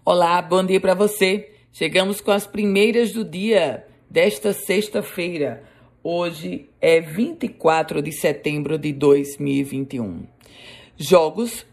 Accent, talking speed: Brazilian, 105 wpm